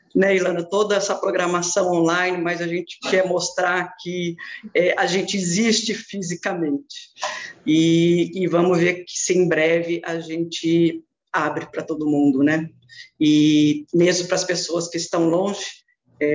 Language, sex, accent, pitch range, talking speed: Portuguese, female, Brazilian, 160-190 Hz, 150 wpm